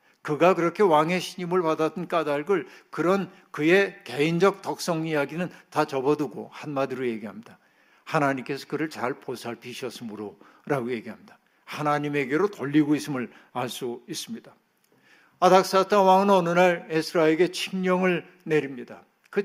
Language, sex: Korean, male